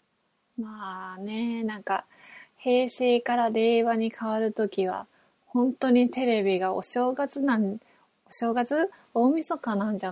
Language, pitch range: Japanese, 195-240 Hz